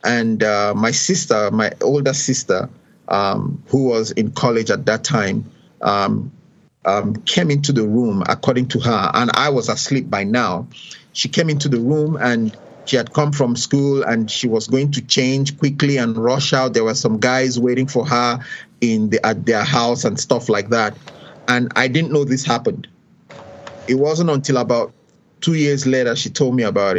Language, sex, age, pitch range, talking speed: English, male, 30-49, 120-145 Hz, 185 wpm